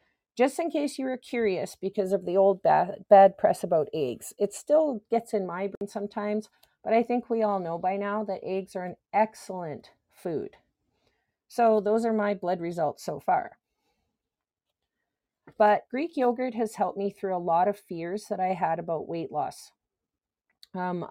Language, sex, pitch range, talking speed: English, female, 185-220 Hz, 175 wpm